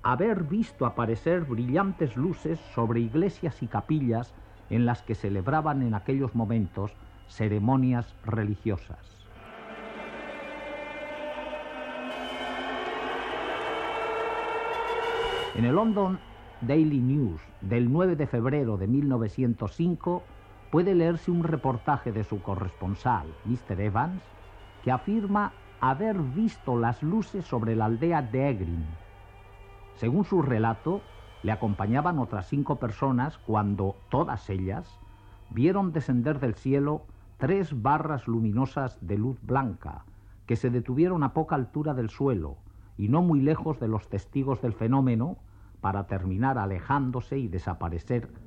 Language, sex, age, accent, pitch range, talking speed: Spanish, male, 60-79, Spanish, 100-150 Hz, 115 wpm